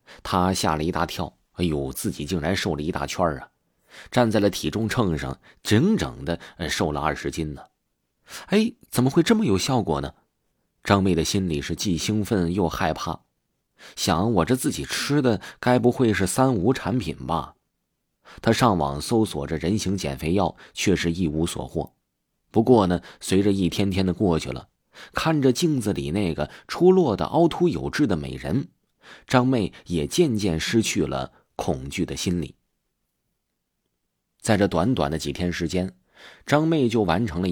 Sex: male